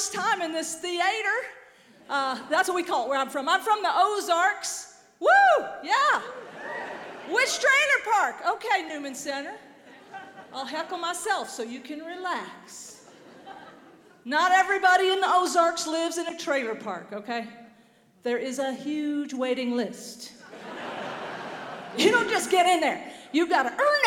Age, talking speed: 40-59, 145 wpm